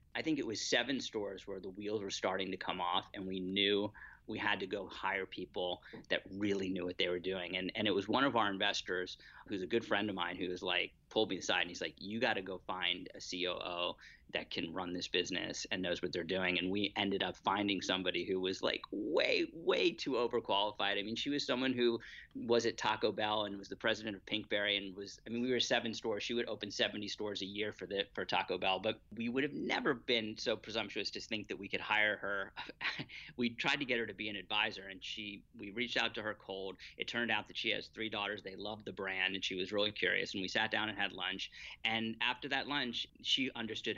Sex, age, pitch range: male, 30-49, 95-115 Hz